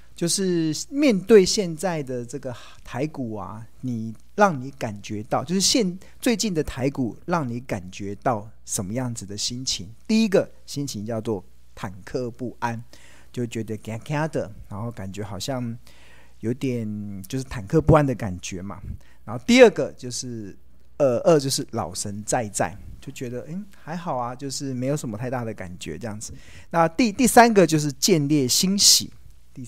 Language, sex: Chinese, male